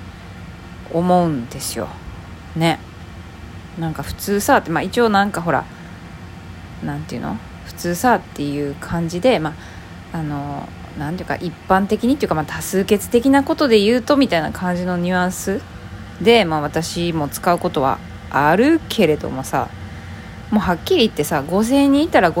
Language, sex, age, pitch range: Japanese, female, 20-39, 145-220 Hz